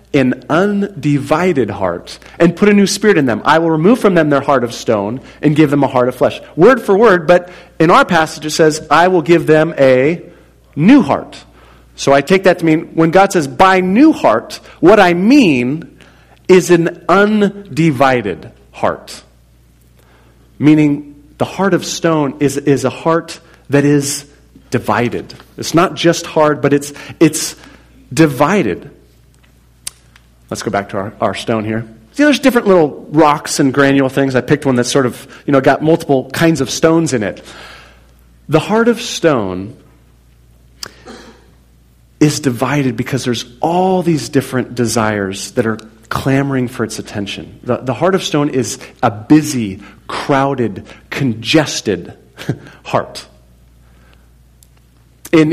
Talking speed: 155 wpm